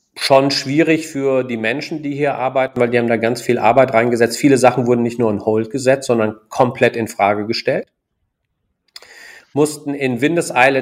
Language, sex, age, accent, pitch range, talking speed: German, male, 40-59, German, 115-135 Hz, 175 wpm